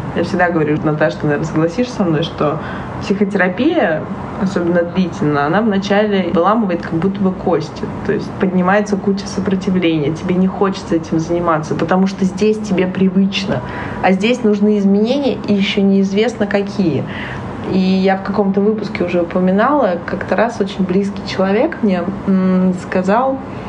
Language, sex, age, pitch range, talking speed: Russian, female, 20-39, 170-205 Hz, 145 wpm